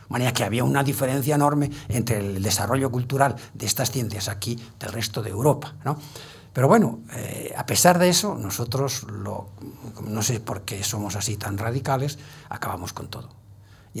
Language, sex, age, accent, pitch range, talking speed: Spanish, male, 60-79, Spanish, 105-140 Hz, 175 wpm